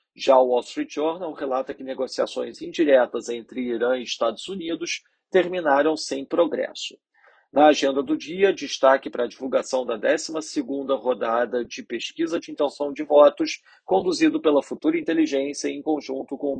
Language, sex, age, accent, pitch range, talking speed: Portuguese, male, 40-59, Brazilian, 130-175 Hz, 150 wpm